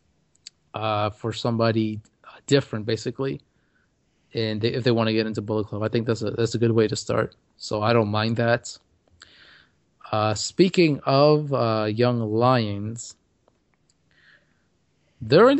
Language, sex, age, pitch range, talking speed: English, male, 30-49, 110-125 Hz, 140 wpm